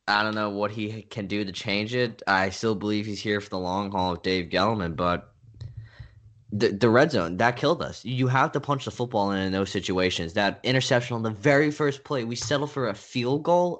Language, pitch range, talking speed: English, 95-130 Hz, 230 wpm